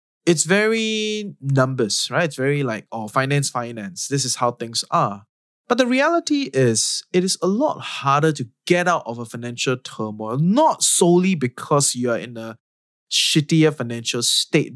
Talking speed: 165 wpm